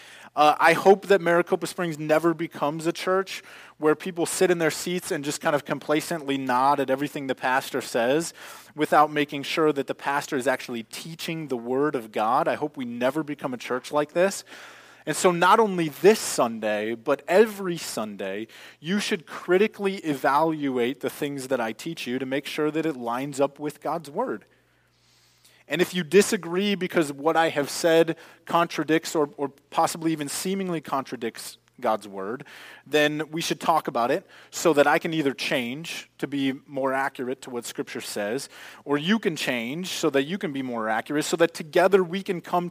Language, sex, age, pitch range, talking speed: English, male, 20-39, 130-170 Hz, 185 wpm